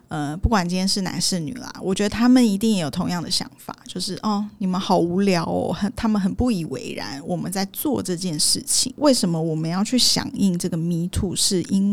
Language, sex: Chinese, female